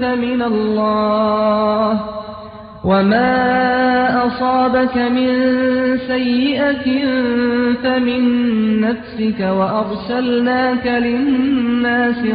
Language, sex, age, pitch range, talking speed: Persian, male, 30-49, 215-245 Hz, 50 wpm